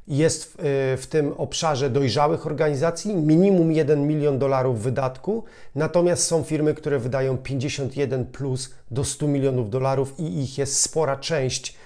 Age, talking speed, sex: 40-59, 150 wpm, male